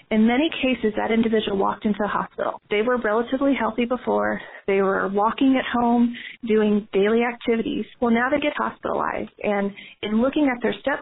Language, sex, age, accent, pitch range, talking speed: English, female, 30-49, American, 210-250 Hz, 180 wpm